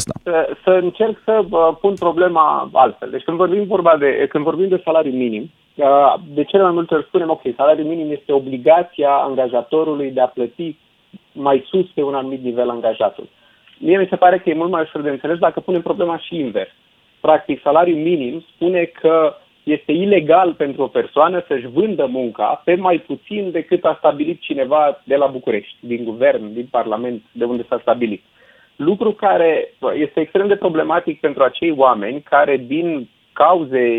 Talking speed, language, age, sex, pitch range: 175 wpm, Romanian, 30-49, male, 140-185 Hz